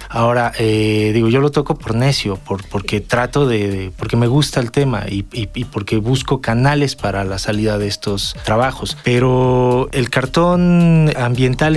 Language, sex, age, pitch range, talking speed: Spanish, male, 30-49, 110-140 Hz, 175 wpm